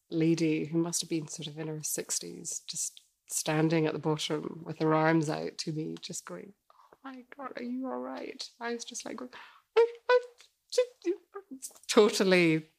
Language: English